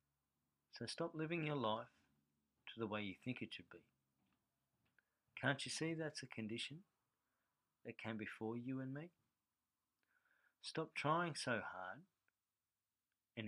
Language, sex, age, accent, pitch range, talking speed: English, male, 40-59, Australian, 105-115 Hz, 135 wpm